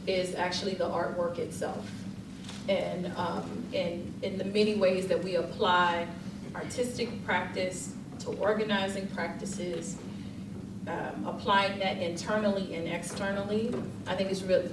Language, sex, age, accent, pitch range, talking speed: English, female, 30-49, American, 175-205 Hz, 120 wpm